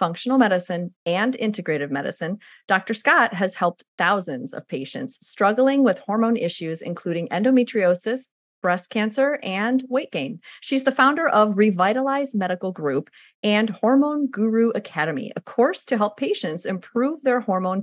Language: English